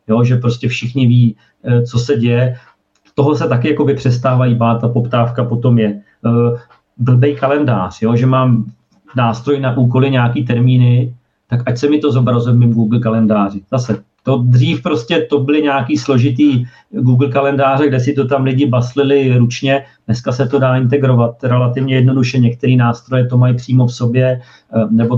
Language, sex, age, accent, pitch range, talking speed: Czech, male, 40-59, native, 120-140 Hz, 160 wpm